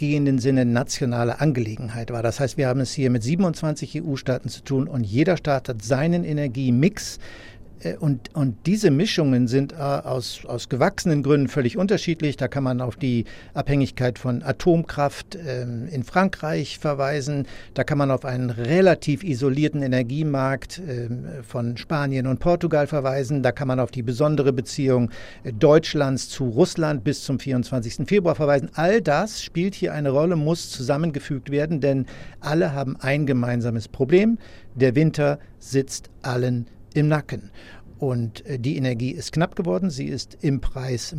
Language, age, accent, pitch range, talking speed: German, 60-79, German, 125-150 Hz, 150 wpm